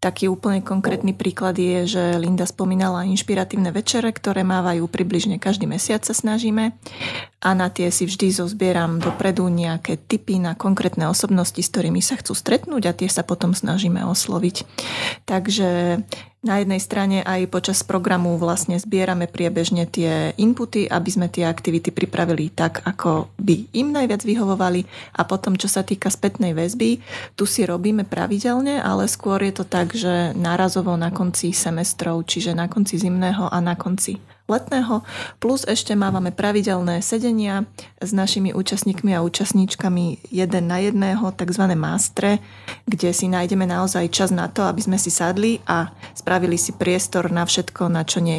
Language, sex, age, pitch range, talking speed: Slovak, female, 30-49, 175-200 Hz, 160 wpm